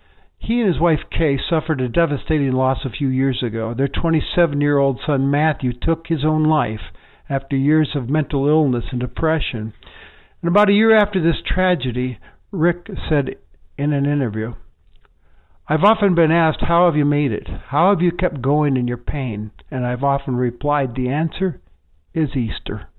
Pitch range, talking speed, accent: 130-175 Hz, 170 wpm, American